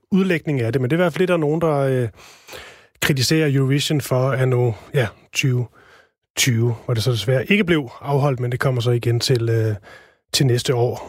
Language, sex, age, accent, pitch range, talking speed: Danish, male, 30-49, native, 135-170 Hz, 200 wpm